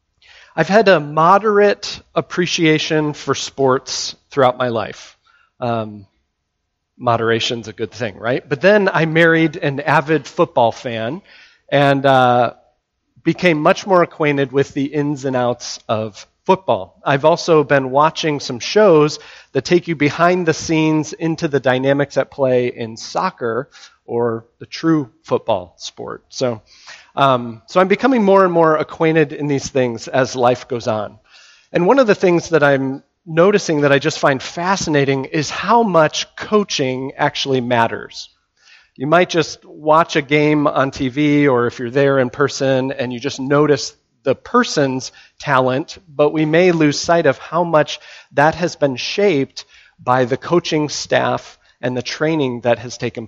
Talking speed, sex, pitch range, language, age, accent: 155 wpm, male, 125-165 Hz, English, 30-49, American